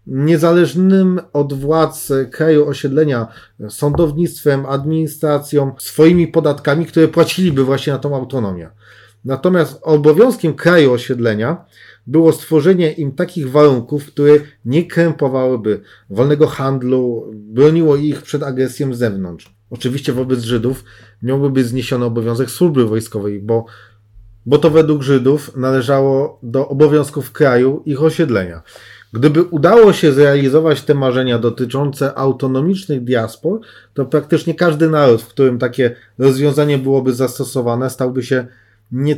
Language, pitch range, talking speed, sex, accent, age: Polish, 125-155 Hz, 120 wpm, male, native, 40-59